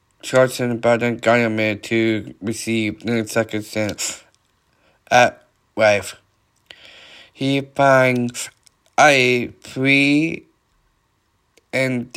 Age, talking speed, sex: 20-39, 80 wpm, male